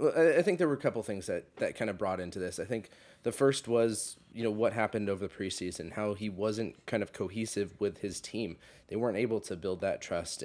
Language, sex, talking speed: English, male, 240 wpm